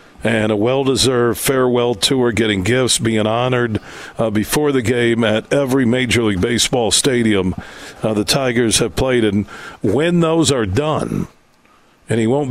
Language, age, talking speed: English, 50-69, 155 wpm